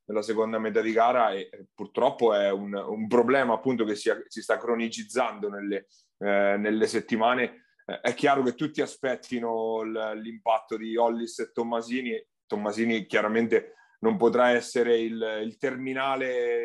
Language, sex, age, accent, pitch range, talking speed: Italian, male, 30-49, native, 110-130 Hz, 145 wpm